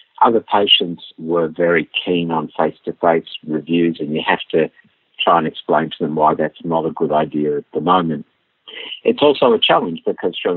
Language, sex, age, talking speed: English, male, 60-79, 180 wpm